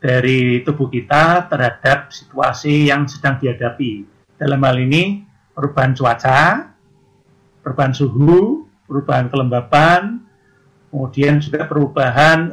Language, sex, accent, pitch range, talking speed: Indonesian, male, native, 135-160 Hz, 95 wpm